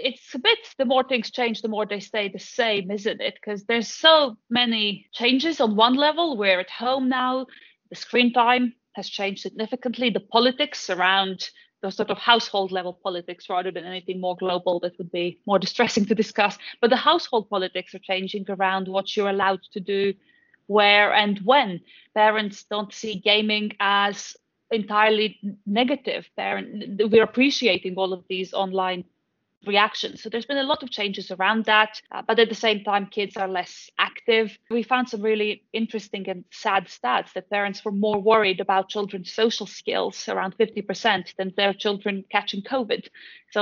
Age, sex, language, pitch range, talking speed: 30-49, female, English, 195-235 Hz, 175 wpm